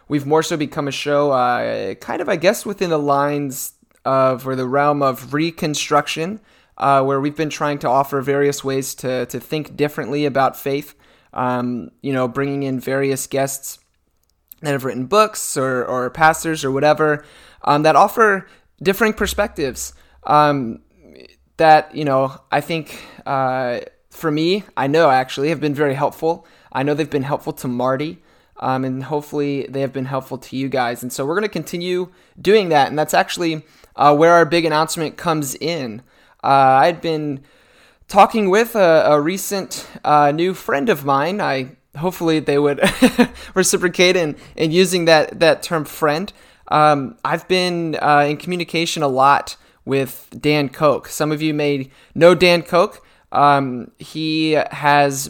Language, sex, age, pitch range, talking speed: English, male, 20-39, 135-165 Hz, 165 wpm